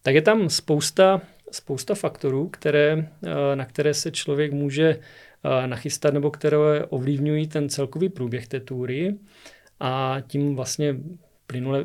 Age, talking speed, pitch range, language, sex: 40-59, 125 wpm, 130-150 Hz, Czech, male